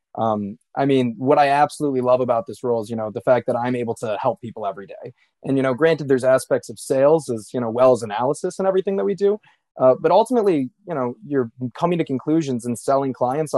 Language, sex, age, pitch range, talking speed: English, male, 20-39, 115-135 Hz, 235 wpm